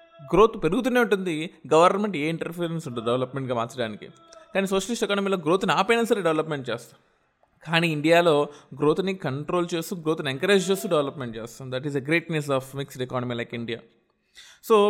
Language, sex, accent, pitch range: Telugu, male, native, 135-180 Hz